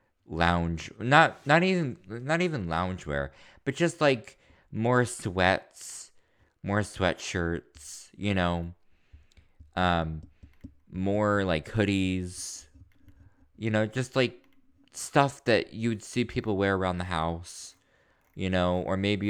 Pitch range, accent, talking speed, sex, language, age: 85-110 Hz, American, 115 wpm, male, English, 20-39